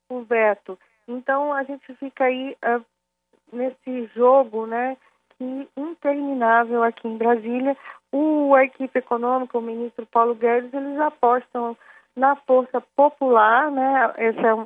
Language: Portuguese